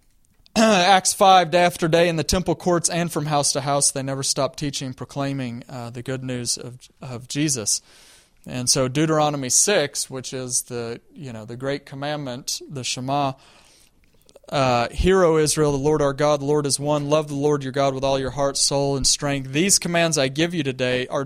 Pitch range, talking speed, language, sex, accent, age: 130-165 Hz, 200 wpm, English, male, American, 30-49